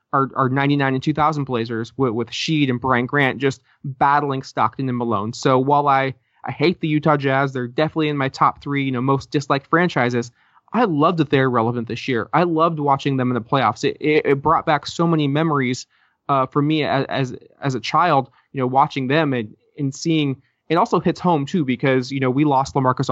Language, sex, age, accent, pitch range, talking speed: English, male, 20-39, American, 130-150 Hz, 220 wpm